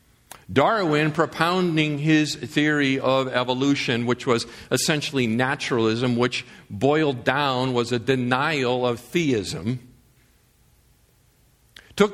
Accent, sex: American, male